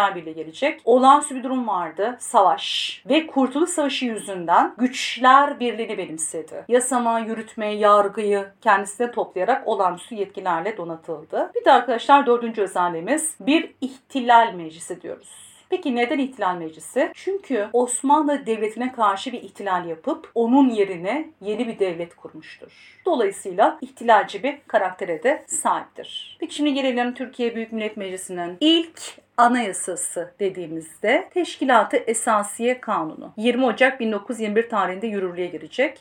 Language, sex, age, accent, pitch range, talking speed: Turkish, female, 40-59, native, 200-275 Hz, 120 wpm